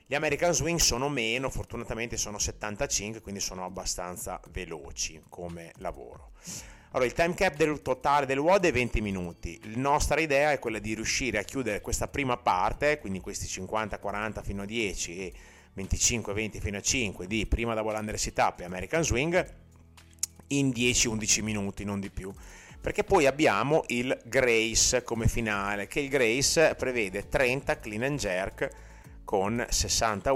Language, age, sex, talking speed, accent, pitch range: Italian, 30-49, male, 160 wpm, native, 95-120 Hz